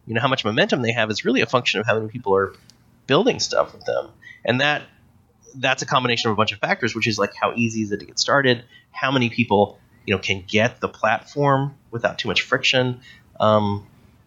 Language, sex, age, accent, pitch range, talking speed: English, male, 30-49, American, 110-135 Hz, 225 wpm